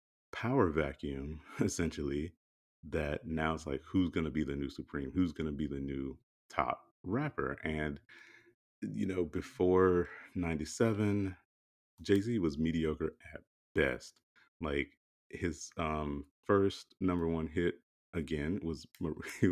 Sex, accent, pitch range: male, American, 75-100 Hz